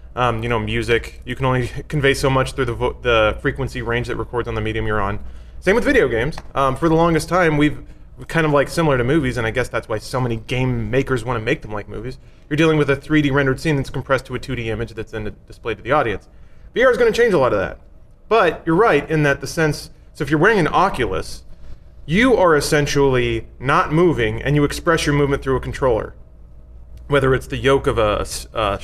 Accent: American